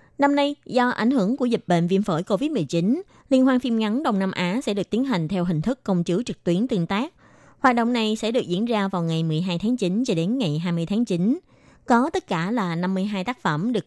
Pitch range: 175-240 Hz